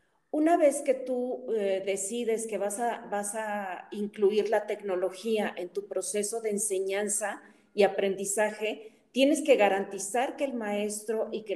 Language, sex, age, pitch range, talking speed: Spanish, female, 40-59, 195-240 Hz, 150 wpm